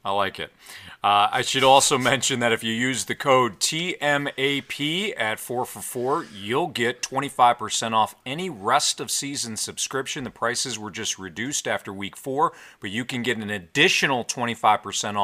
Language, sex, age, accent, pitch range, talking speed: English, male, 40-59, American, 110-135 Hz, 160 wpm